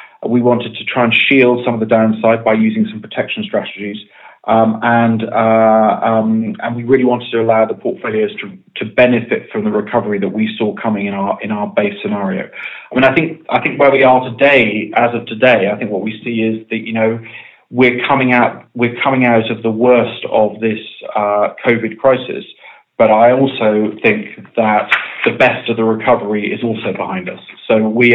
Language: English